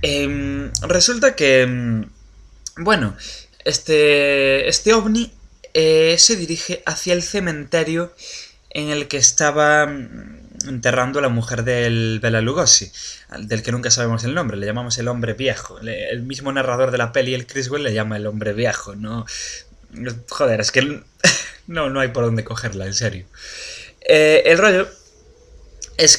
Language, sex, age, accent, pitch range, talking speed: English, male, 20-39, Spanish, 115-160 Hz, 150 wpm